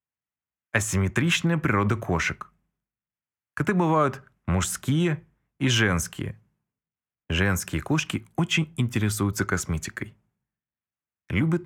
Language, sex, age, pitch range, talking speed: Russian, male, 20-39, 95-135 Hz, 70 wpm